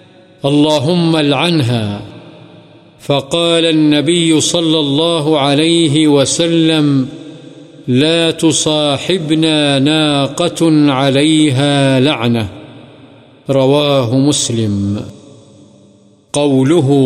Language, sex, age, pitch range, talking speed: Urdu, male, 50-69, 135-160 Hz, 55 wpm